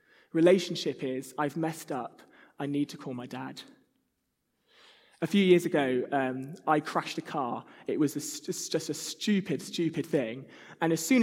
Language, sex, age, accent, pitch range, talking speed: English, male, 20-39, British, 150-180 Hz, 165 wpm